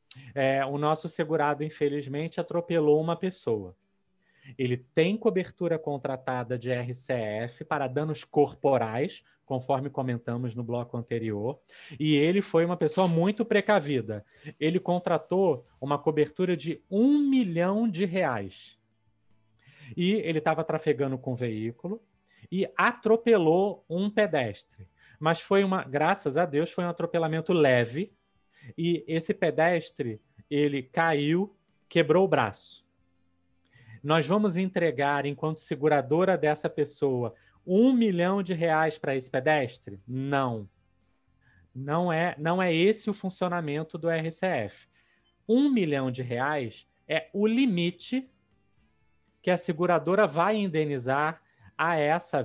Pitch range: 130-180 Hz